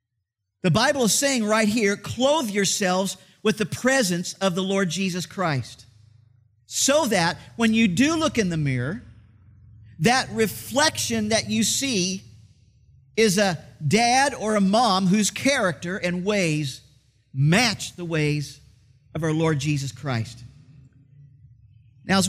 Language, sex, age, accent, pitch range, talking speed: English, male, 50-69, American, 135-215 Hz, 135 wpm